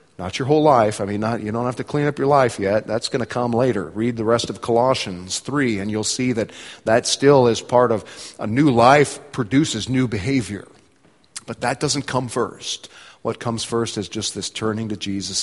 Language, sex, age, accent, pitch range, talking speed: English, male, 40-59, American, 100-120 Hz, 215 wpm